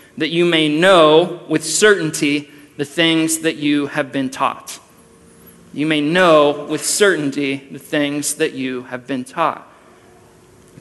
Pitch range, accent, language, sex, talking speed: 145-185 Hz, American, English, male, 145 wpm